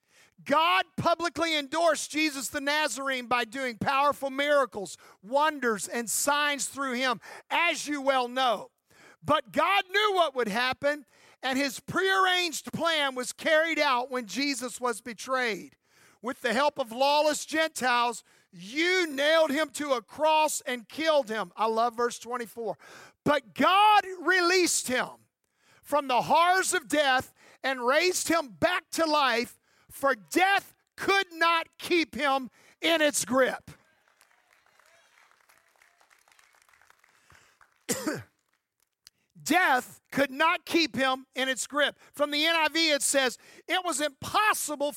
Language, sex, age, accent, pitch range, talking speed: English, male, 50-69, American, 255-330 Hz, 125 wpm